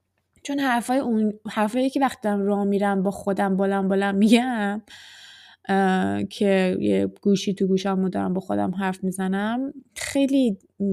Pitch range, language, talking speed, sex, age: 175-250 Hz, Persian, 130 wpm, female, 20-39